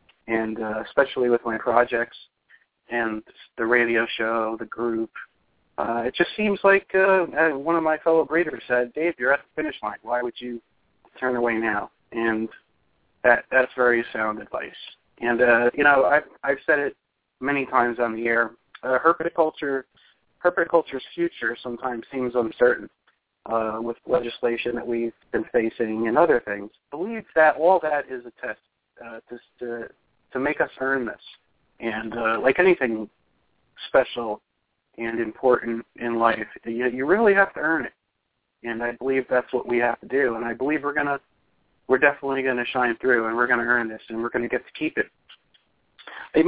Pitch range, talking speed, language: 115-145 Hz, 180 wpm, English